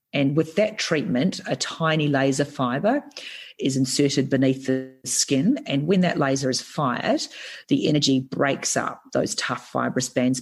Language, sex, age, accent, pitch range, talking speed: English, female, 40-59, Australian, 130-150 Hz, 155 wpm